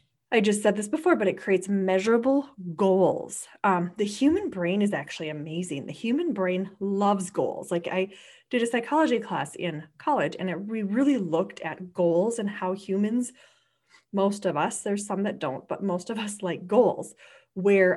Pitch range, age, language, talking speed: 180-245 Hz, 30-49, English, 175 wpm